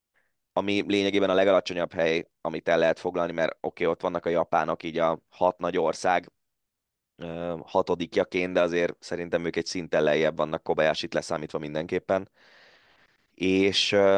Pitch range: 85-95 Hz